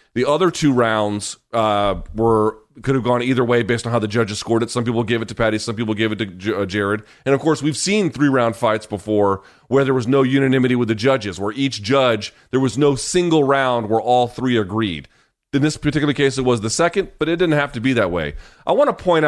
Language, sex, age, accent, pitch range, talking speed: English, male, 30-49, American, 110-150 Hz, 250 wpm